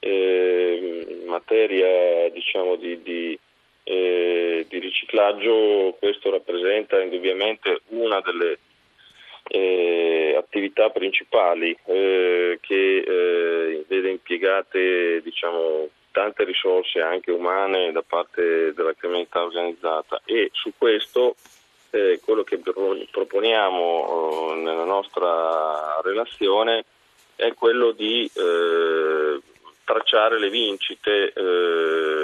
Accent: native